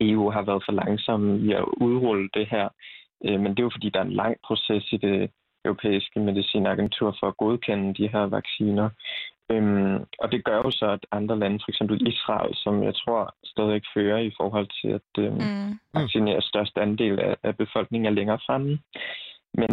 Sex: male